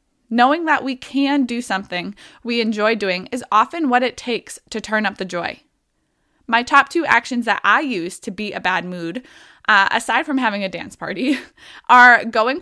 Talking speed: 190 wpm